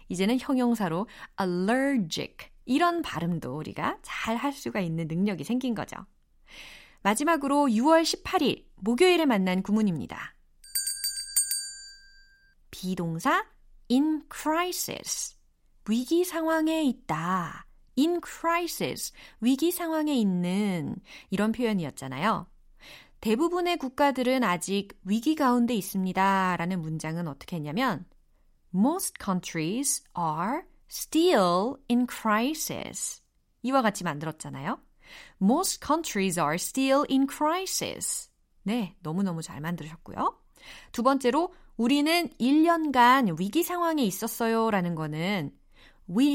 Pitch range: 185-295 Hz